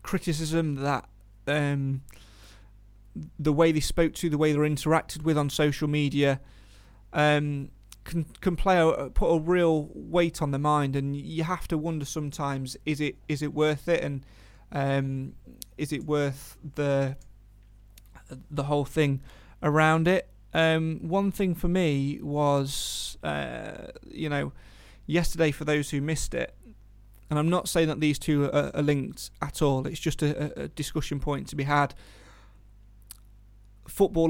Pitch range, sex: 130-155 Hz, male